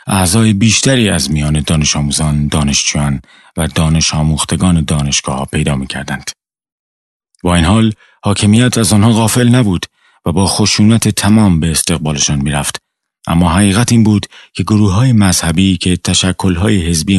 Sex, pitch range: male, 80-105 Hz